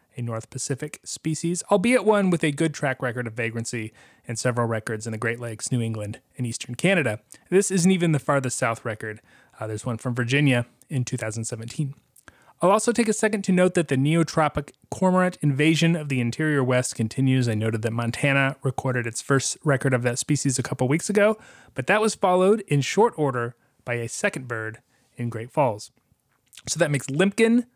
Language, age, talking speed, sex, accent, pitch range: English, 30-49, 190 wpm, male, American, 120-155 Hz